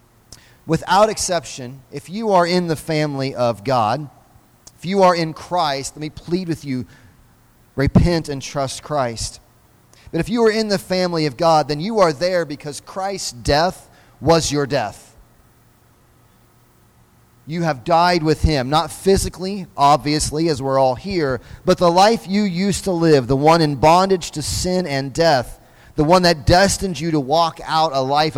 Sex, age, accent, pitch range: male, 30-49, American, 130-170 Hz